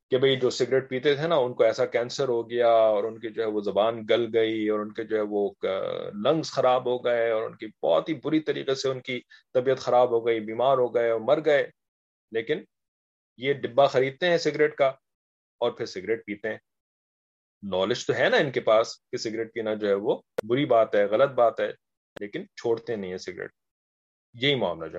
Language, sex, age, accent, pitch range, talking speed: English, male, 30-49, Indian, 115-150 Hz, 170 wpm